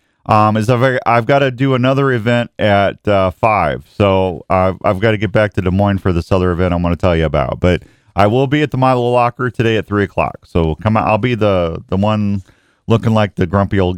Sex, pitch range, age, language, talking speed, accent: male, 100-140 Hz, 40-59, English, 240 wpm, American